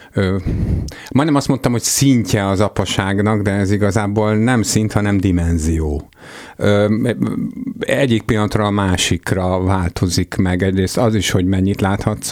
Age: 50-69